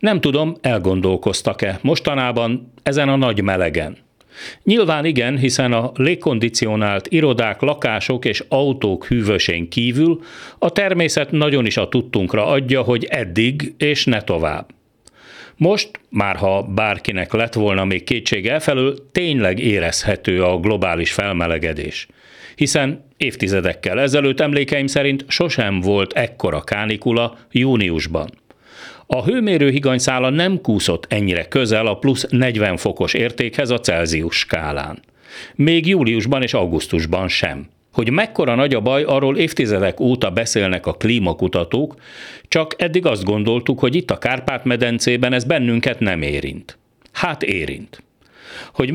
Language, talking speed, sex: Hungarian, 125 wpm, male